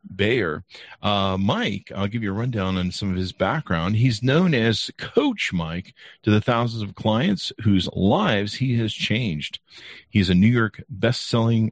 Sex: male